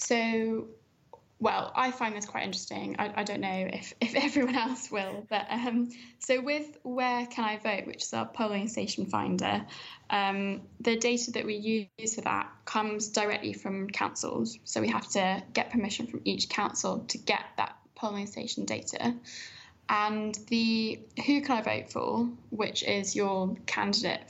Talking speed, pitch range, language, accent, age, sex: 170 wpm, 215-280 Hz, English, British, 10-29, female